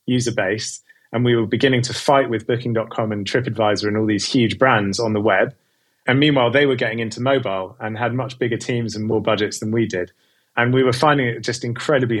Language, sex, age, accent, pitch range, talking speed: English, male, 30-49, British, 110-135 Hz, 220 wpm